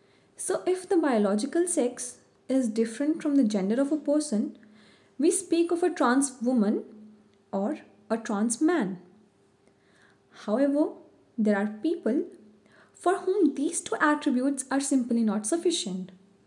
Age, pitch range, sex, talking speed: 20-39, 215-300 Hz, female, 130 wpm